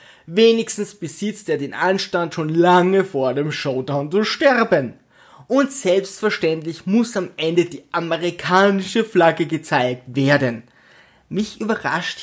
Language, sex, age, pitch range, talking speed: German, male, 20-39, 155-200 Hz, 120 wpm